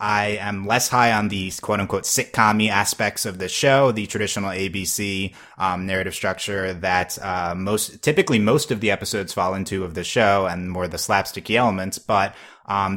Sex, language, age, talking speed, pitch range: male, English, 20-39, 180 wpm, 95-110 Hz